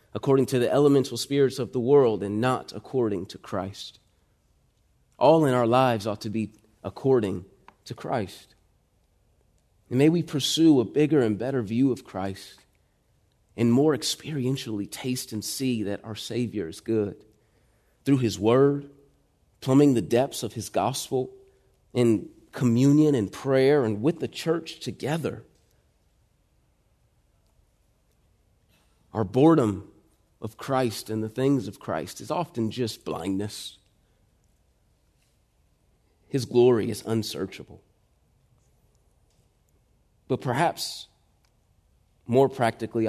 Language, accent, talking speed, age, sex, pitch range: English, American, 115 wpm, 30-49, male, 100-130 Hz